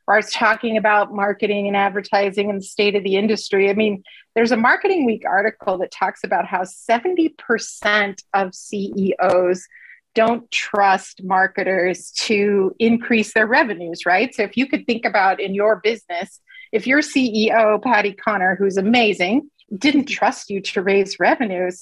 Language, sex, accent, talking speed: English, female, American, 155 wpm